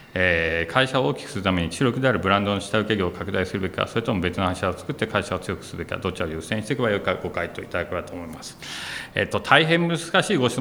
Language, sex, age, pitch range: Japanese, male, 40-59, 90-125 Hz